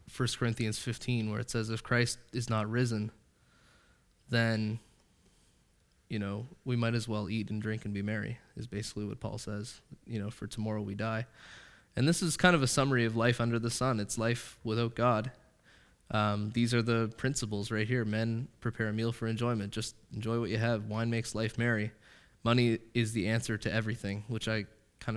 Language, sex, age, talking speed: English, male, 20-39, 195 wpm